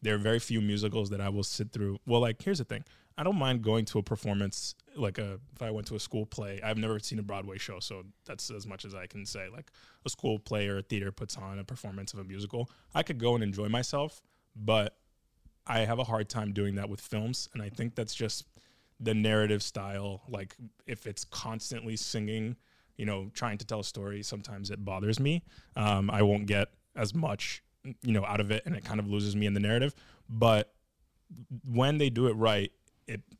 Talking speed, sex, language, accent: 225 wpm, male, English, American